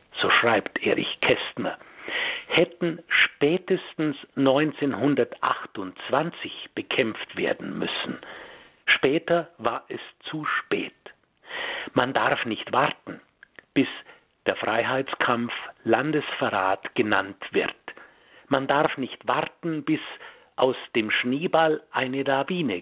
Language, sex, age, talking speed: German, male, 60-79, 90 wpm